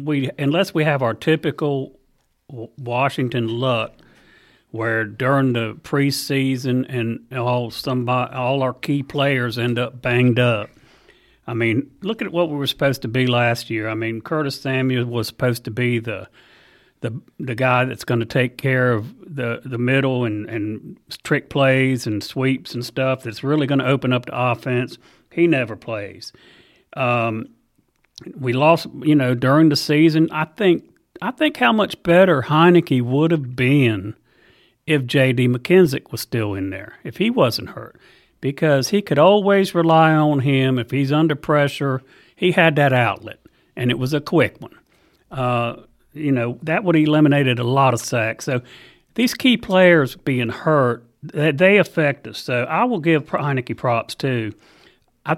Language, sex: English, male